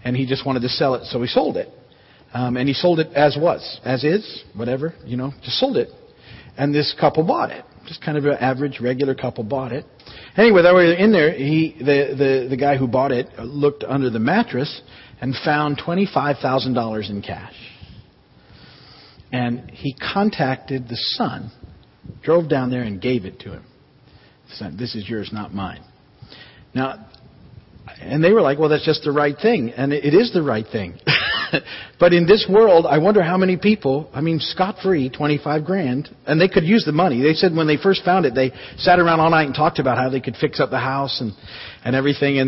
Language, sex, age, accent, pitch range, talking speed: English, male, 50-69, American, 125-155 Hz, 205 wpm